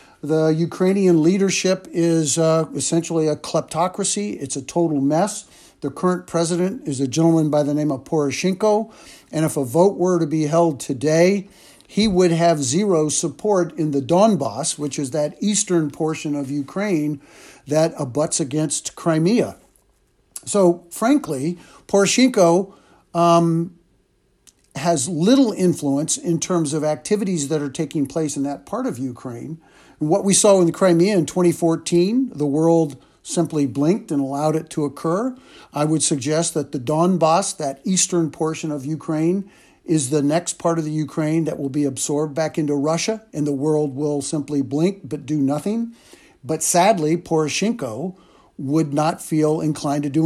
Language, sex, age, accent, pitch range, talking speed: English, male, 50-69, American, 150-175 Hz, 155 wpm